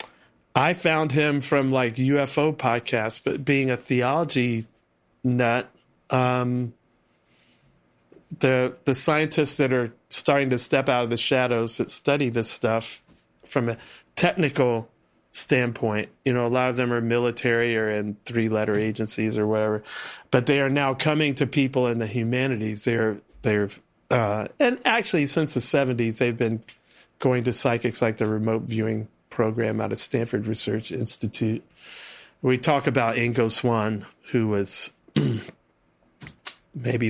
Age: 40-59